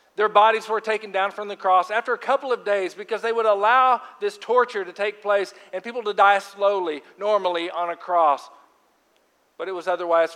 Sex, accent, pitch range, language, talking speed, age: male, American, 145-200 Hz, English, 205 wpm, 50-69